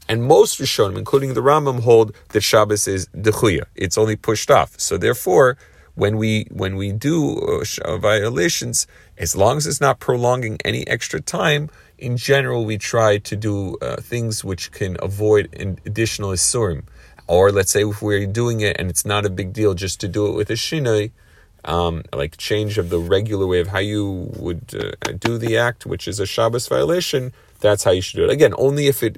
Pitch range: 95-115 Hz